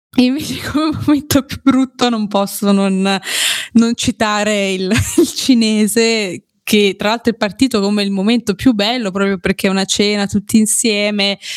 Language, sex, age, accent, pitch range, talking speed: Italian, female, 20-39, native, 195-230 Hz, 155 wpm